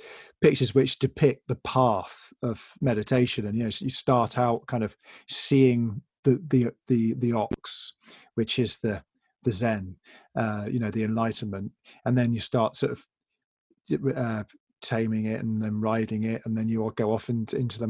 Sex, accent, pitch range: male, British, 115-135 Hz